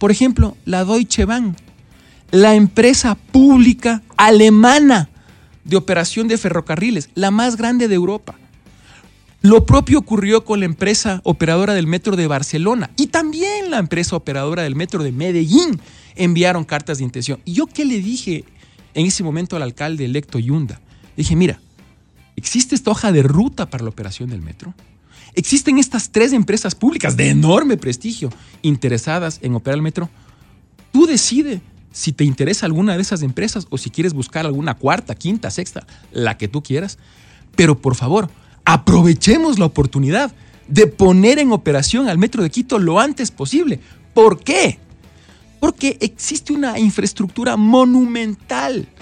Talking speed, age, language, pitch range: 150 wpm, 40-59, Spanish, 145-230 Hz